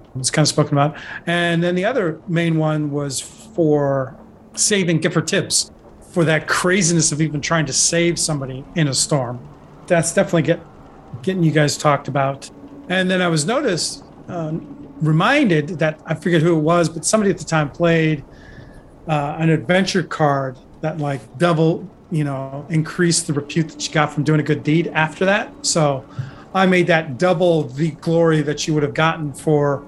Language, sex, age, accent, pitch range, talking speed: English, male, 40-59, American, 145-175 Hz, 180 wpm